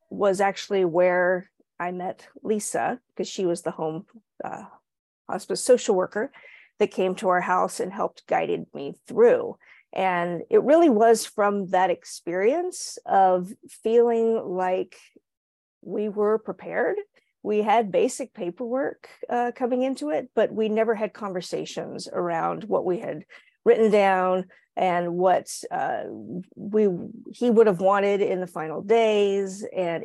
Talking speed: 140 wpm